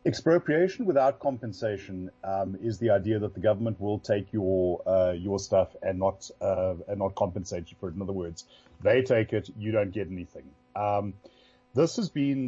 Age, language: 30-49, English